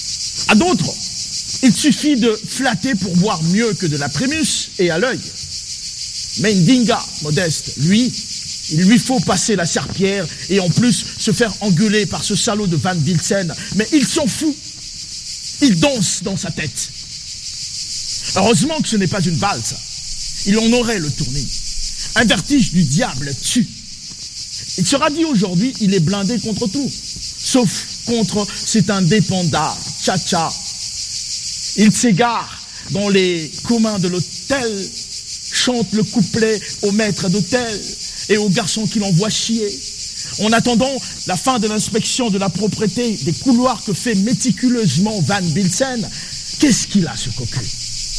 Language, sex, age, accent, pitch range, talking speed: French, male, 50-69, French, 165-230 Hz, 145 wpm